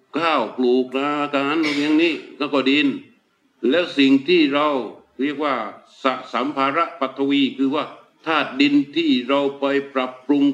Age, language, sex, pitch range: 60-79, Thai, male, 120-145 Hz